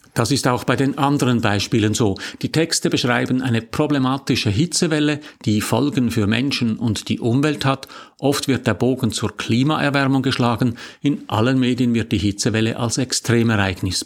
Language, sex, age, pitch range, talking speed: German, male, 50-69, 110-135 Hz, 160 wpm